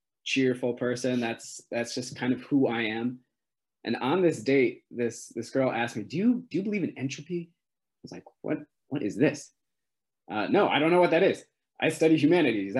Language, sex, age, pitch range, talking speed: English, male, 20-39, 120-155 Hz, 205 wpm